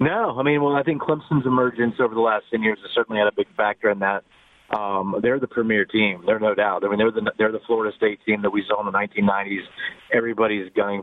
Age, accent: 30-49, American